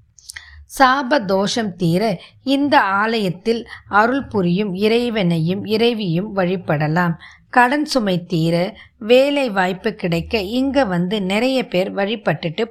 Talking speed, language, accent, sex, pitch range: 100 wpm, Tamil, native, female, 180-250 Hz